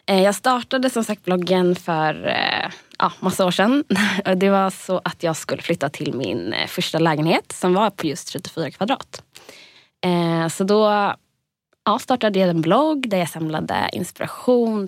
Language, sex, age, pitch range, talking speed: English, female, 20-39, 170-210 Hz, 155 wpm